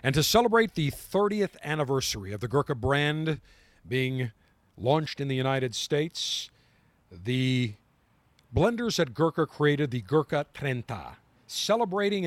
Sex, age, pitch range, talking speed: male, 50-69, 125-160 Hz, 120 wpm